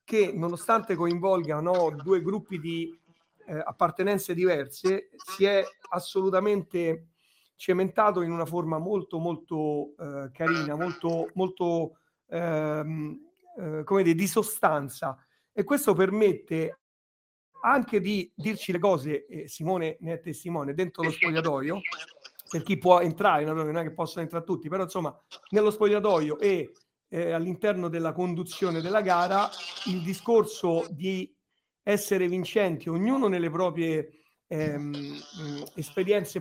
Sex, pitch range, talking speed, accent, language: male, 160-200 Hz, 125 wpm, native, Italian